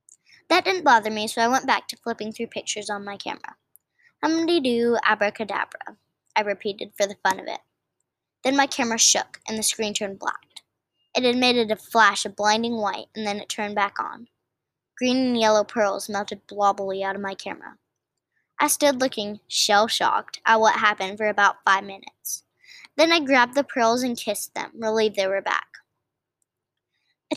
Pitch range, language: 210-270 Hz, English